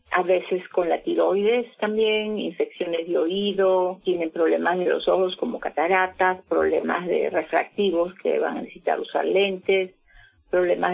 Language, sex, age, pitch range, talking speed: Spanish, female, 30-49, 175-215 Hz, 145 wpm